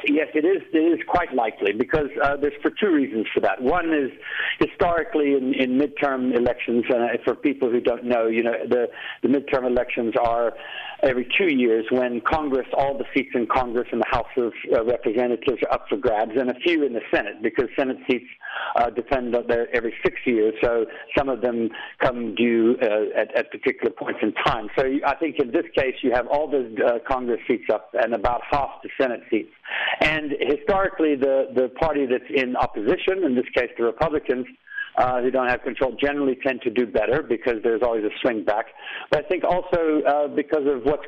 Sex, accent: male, American